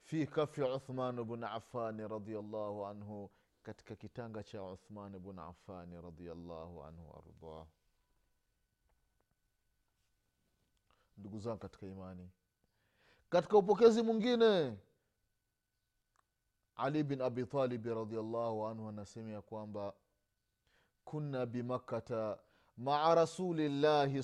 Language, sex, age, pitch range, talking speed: Swahili, male, 30-49, 100-145 Hz, 85 wpm